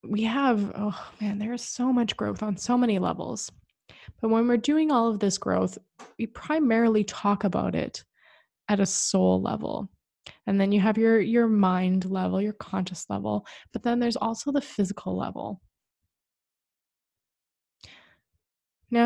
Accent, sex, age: American, female, 20-39